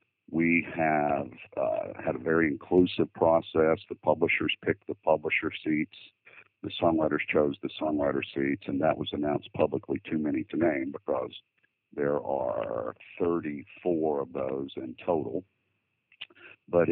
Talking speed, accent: 135 wpm, American